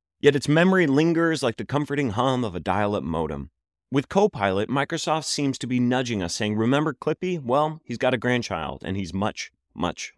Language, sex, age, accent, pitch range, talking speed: English, male, 30-49, American, 105-145 Hz, 190 wpm